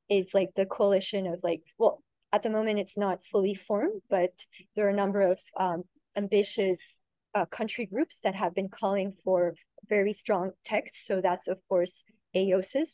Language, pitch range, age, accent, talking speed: English, 185-205 Hz, 30-49, American, 175 wpm